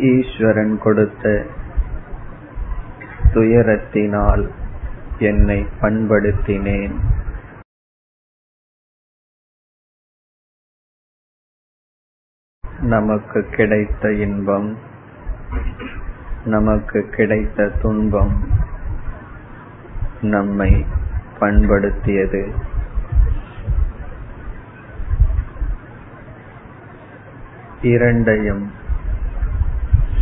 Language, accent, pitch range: Tamil, native, 100-110 Hz